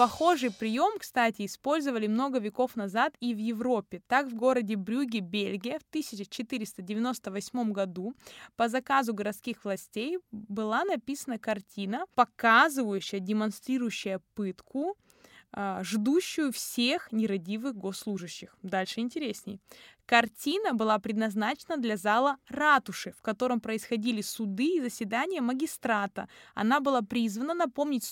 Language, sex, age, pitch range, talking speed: Russian, female, 20-39, 210-265 Hz, 110 wpm